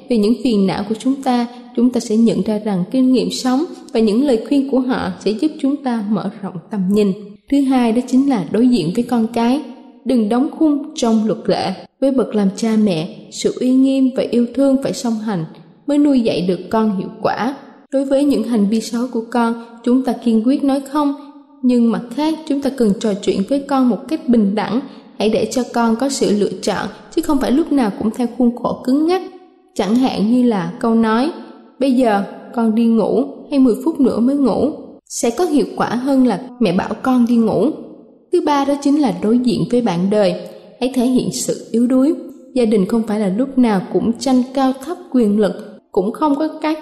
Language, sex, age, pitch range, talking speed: Vietnamese, female, 20-39, 215-270 Hz, 225 wpm